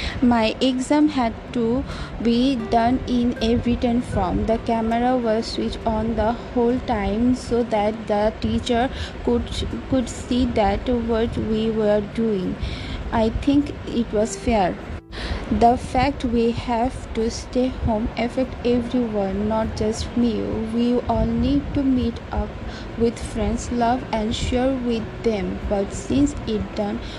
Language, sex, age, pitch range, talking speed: English, female, 20-39, 220-250 Hz, 140 wpm